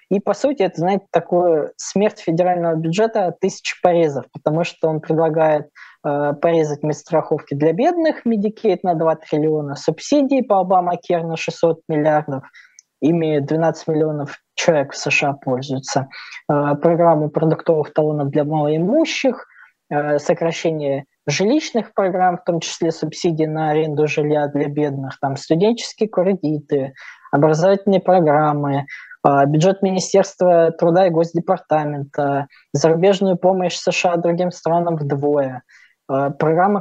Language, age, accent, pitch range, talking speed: Russian, 20-39, native, 155-185 Hz, 120 wpm